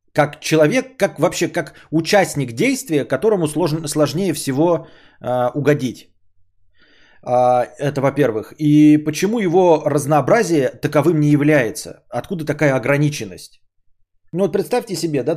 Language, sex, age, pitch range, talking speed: Bulgarian, male, 20-39, 130-175 Hz, 115 wpm